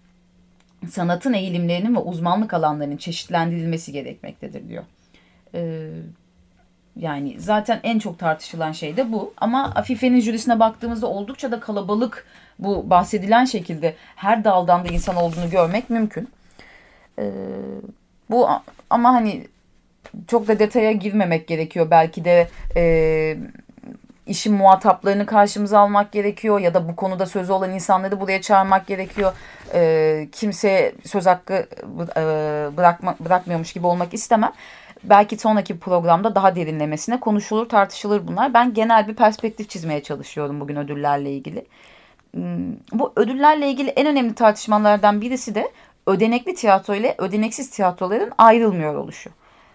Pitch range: 170-225 Hz